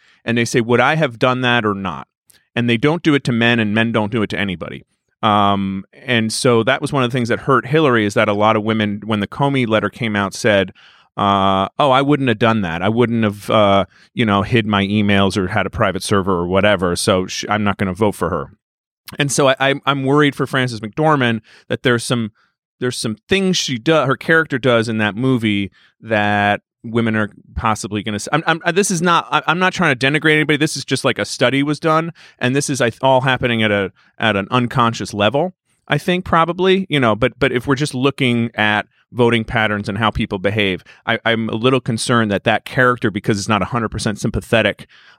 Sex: male